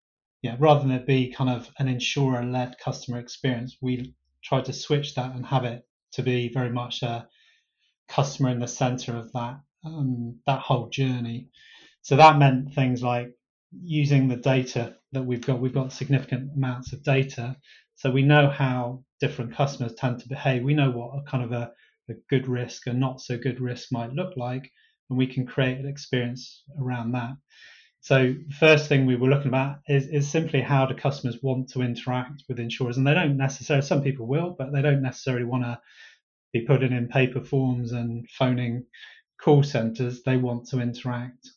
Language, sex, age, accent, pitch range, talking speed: English, male, 30-49, British, 125-140 Hz, 190 wpm